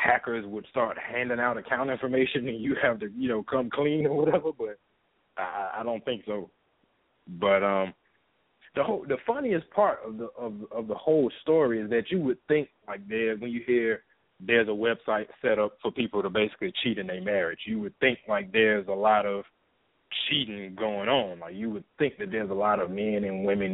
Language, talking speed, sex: English, 210 wpm, male